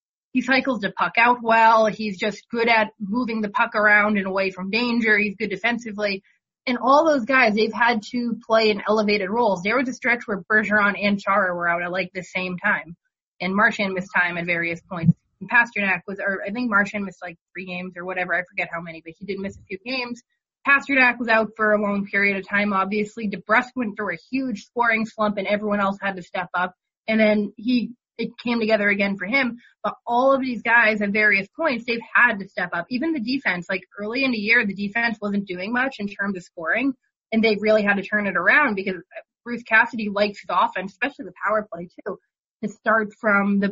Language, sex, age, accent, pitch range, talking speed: English, female, 20-39, American, 195-235 Hz, 230 wpm